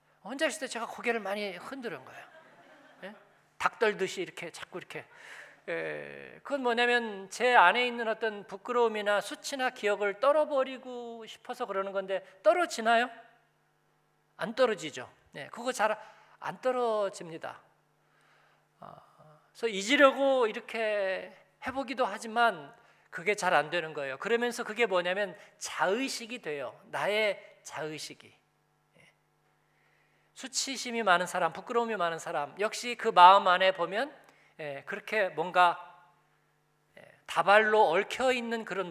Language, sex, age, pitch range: Korean, male, 40-59, 175-245 Hz